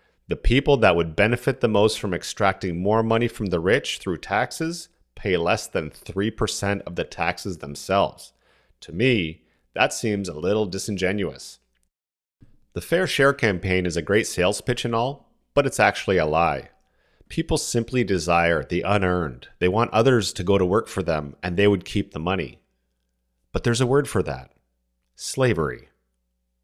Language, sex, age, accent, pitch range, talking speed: English, male, 40-59, American, 90-125 Hz, 165 wpm